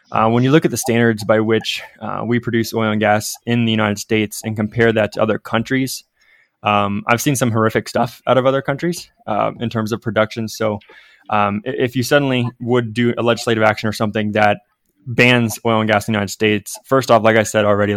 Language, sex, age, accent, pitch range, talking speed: English, male, 20-39, American, 105-115 Hz, 225 wpm